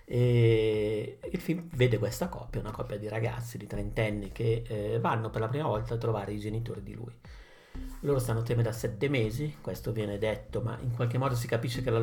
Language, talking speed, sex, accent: Italian, 210 wpm, male, native